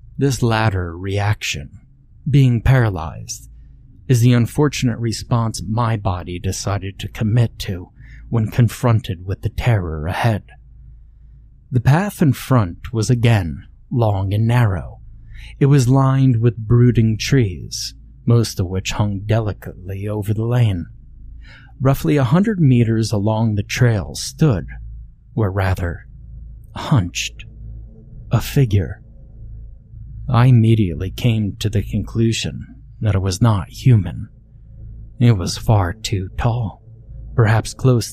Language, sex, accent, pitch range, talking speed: English, male, American, 105-125 Hz, 120 wpm